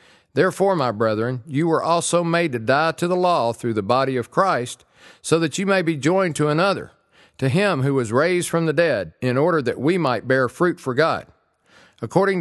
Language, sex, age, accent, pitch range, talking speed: English, male, 50-69, American, 125-175 Hz, 210 wpm